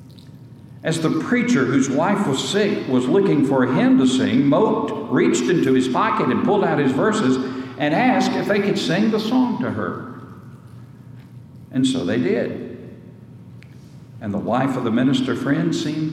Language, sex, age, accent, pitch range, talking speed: English, male, 60-79, American, 130-190 Hz, 165 wpm